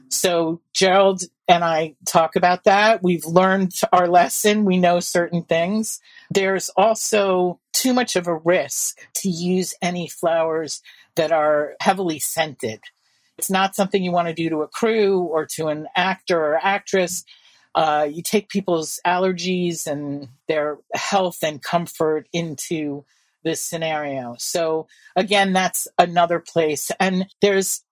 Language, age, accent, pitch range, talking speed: English, 50-69, American, 160-195 Hz, 140 wpm